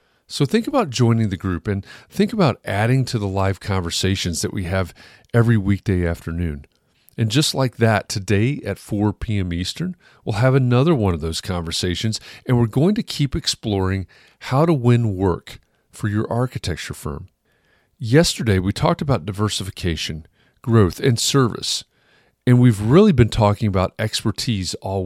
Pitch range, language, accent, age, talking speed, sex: 95-125 Hz, English, American, 40-59, 160 wpm, male